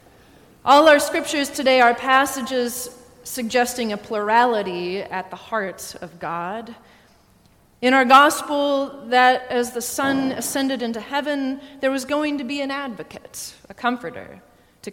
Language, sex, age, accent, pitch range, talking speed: English, female, 30-49, American, 185-250 Hz, 135 wpm